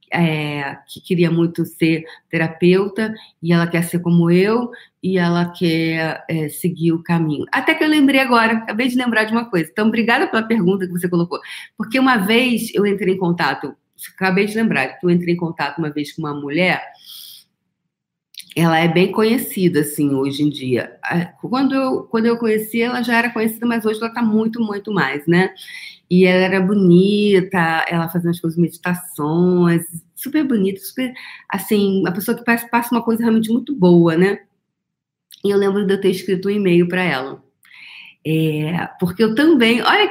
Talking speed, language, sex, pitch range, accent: 175 wpm, Portuguese, female, 165-220 Hz, Brazilian